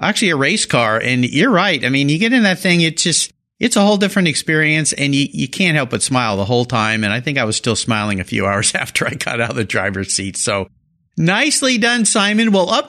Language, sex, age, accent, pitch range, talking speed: English, male, 50-69, American, 125-195 Hz, 255 wpm